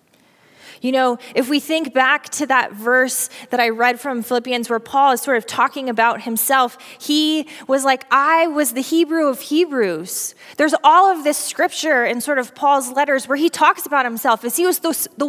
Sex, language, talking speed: female, English, 195 wpm